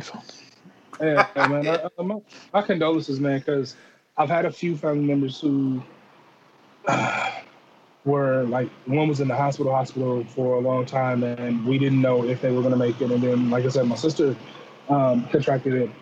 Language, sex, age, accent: English, male, 20-39, American